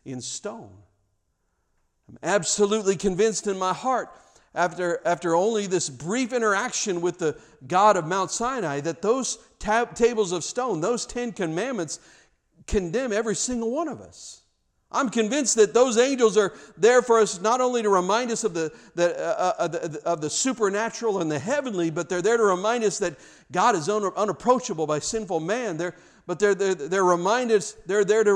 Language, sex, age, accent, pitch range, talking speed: English, male, 50-69, American, 160-220 Hz, 170 wpm